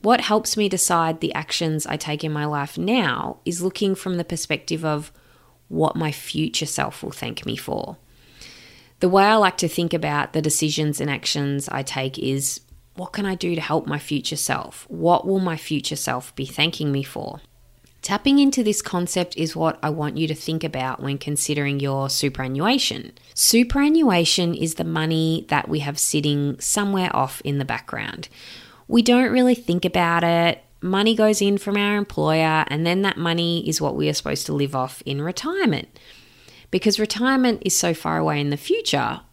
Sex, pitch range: female, 150-200 Hz